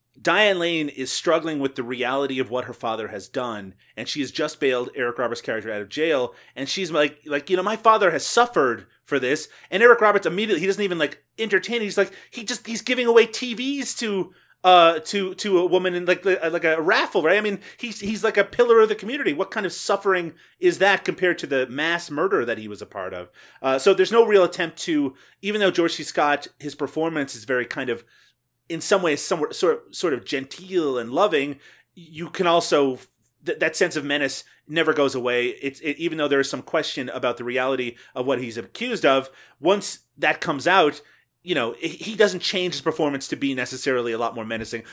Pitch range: 130-190 Hz